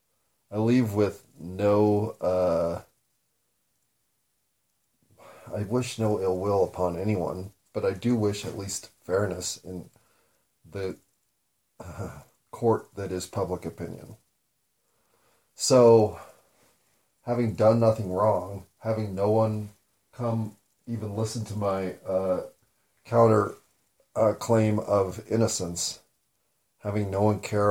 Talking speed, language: 105 wpm, English